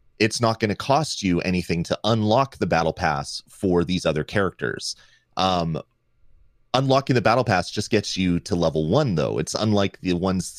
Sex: male